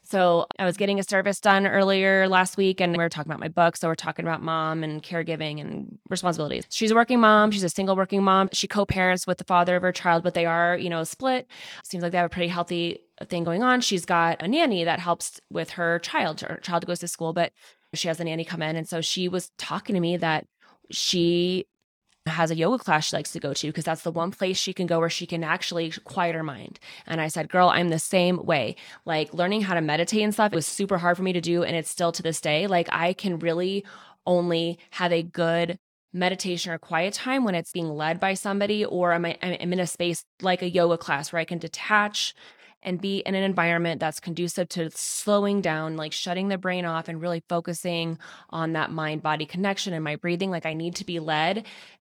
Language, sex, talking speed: English, female, 235 wpm